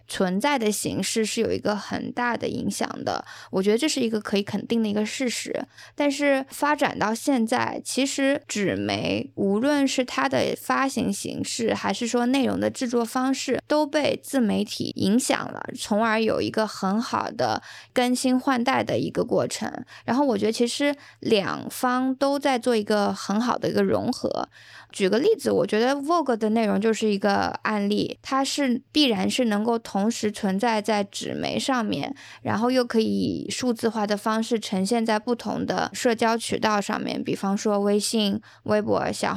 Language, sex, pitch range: Chinese, female, 210-260 Hz